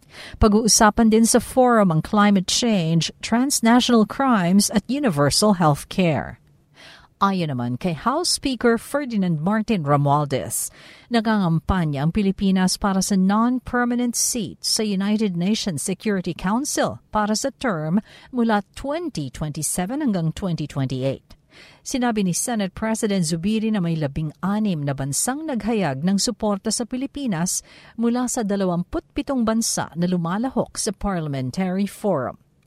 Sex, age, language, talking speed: female, 50-69, Filipino, 120 wpm